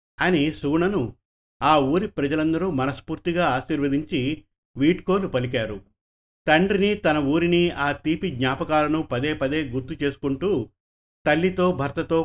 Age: 50-69